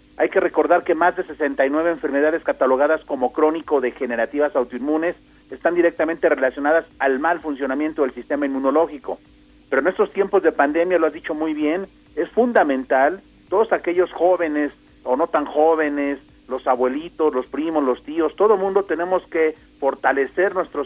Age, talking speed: 50-69, 150 wpm